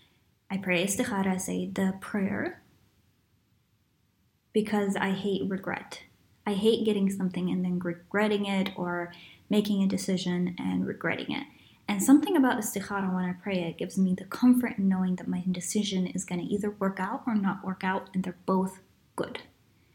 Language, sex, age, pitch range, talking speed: English, female, 20-39, 190-240 Hz, 170 wpm